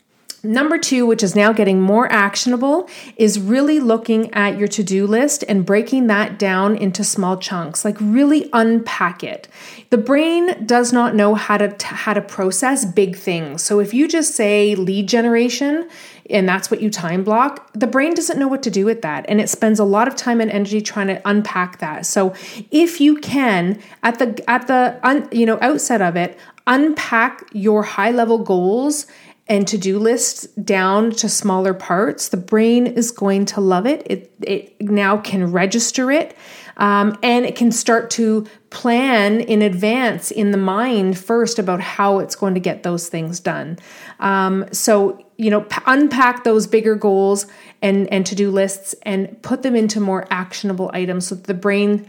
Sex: female